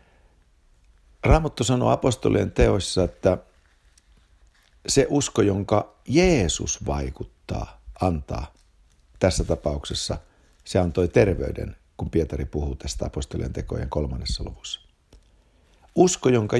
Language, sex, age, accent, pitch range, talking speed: Finnish, male, 60-79, native, 75-105 Hz, 95 wpm